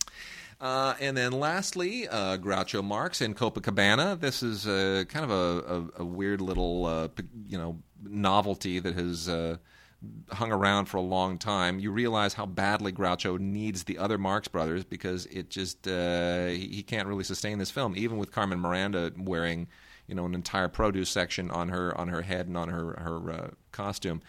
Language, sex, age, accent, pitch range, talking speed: English, male, 30-49, American, 90-110 Hz, 185 wpm